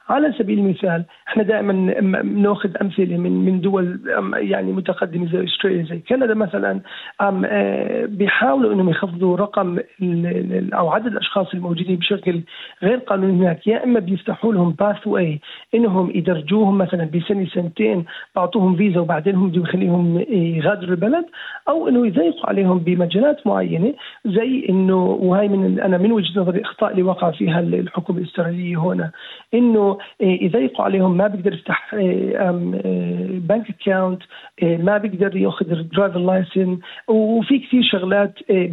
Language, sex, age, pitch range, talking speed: Arabic, male, 40-59, 180-215 Hz, 135 wpm